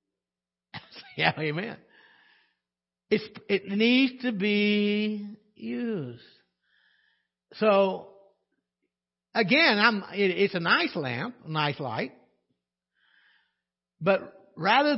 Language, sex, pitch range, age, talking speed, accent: English, male, 135-225 Hz, 60-79, 85 wpm, American